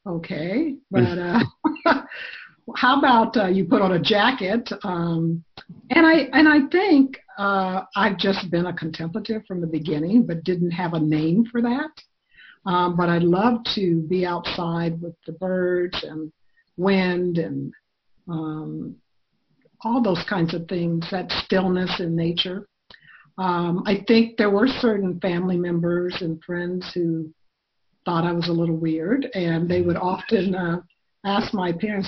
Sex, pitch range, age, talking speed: female, 175-225 Hz, 60-79, 155 wpm